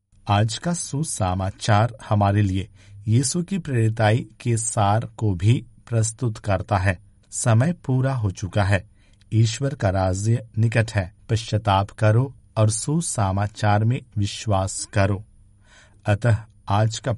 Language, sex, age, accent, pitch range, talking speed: Hindi, male, 50-69, native, 100-120 Hz, 120 wpm